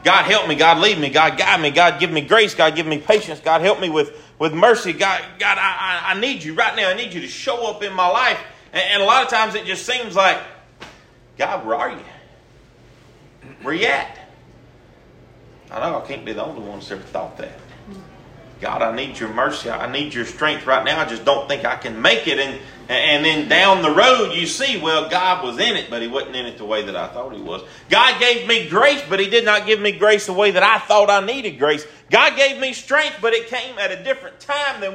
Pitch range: 155-225 Hz